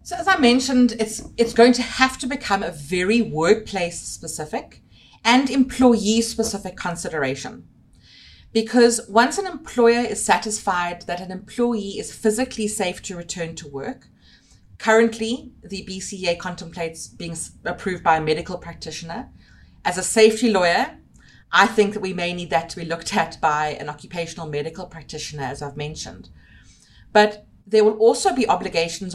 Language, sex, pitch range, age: English, female, 165-220 Hz, 30-49